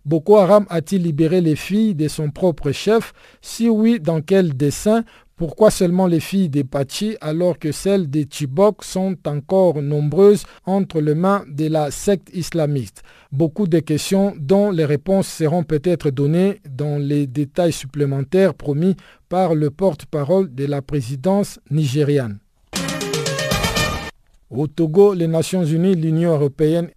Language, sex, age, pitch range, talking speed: French, male, 50-69, 145-185 Hz, 140 wpm